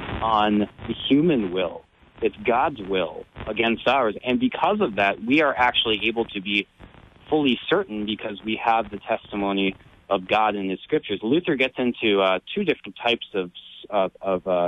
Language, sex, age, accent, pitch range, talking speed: English, male, 30-49, American, 95-130 Hz, 170 wpm